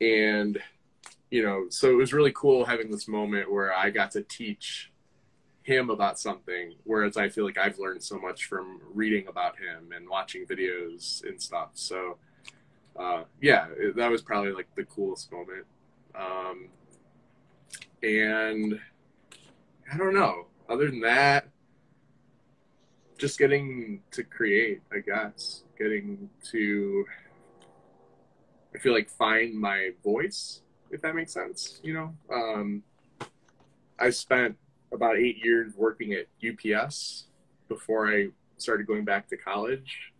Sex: male